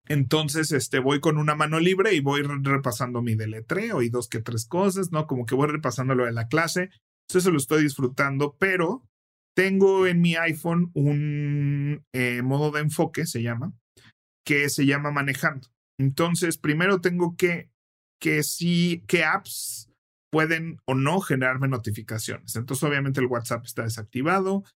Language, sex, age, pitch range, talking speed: Spanish, male, 40-59, 120-155 Hz, 160 wpm